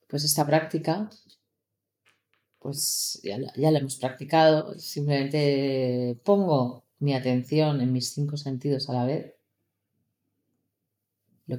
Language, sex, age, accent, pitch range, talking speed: Spanish, female, 30-49, Spanish, 125-155 Hz, 115 wpm